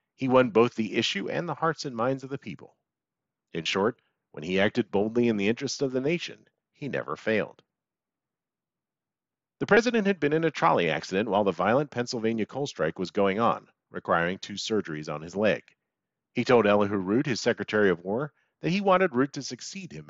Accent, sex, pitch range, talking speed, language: American, male, 105-145 Hz, 195 wpm, English